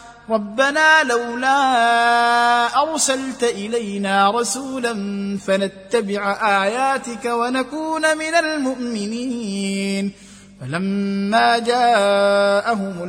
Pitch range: 200-265 Hz